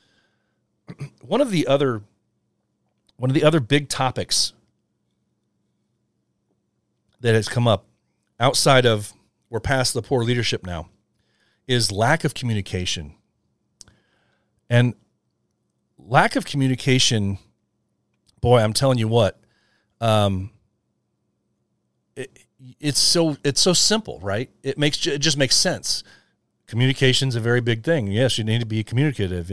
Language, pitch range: English, 110-145 Hz